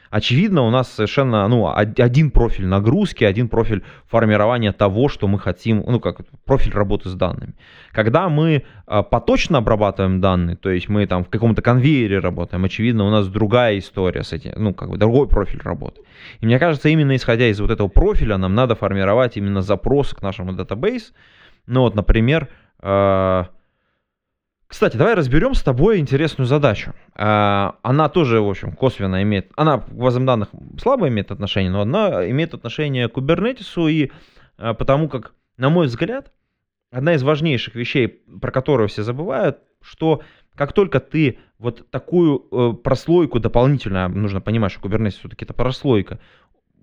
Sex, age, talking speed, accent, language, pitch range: male, 20-39, 155 wpm, native, Russian, 100-135 Hz